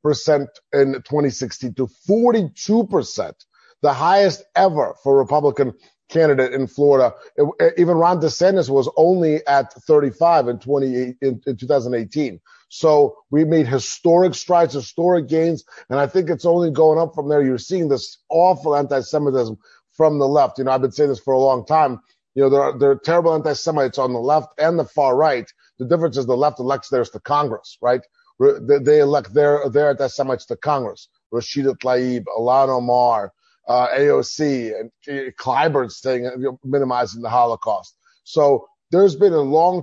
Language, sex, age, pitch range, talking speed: English, male, 30-49, 135-160 Hz, 170 wpm